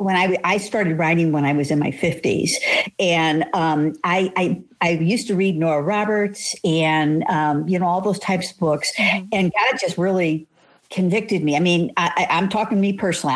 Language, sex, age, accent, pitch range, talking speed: English, female, 60-79, American, 160-205 Hz, 200 wpm